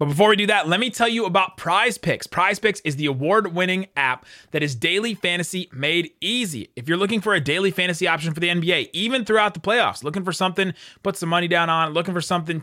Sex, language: male, English